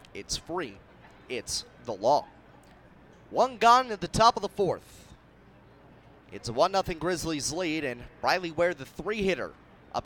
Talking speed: 145 wpm